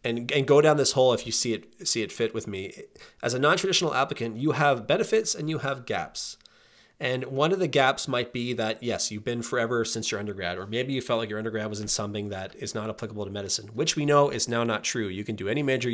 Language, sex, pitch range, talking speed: English, male, 105-135 Hz, 260 wpm